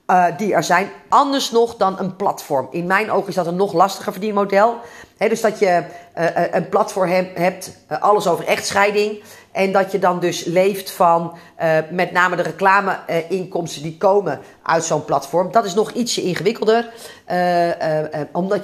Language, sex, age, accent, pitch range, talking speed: Dutch, female, 40-59, Dutch, 170-210 Hz, 160 wpm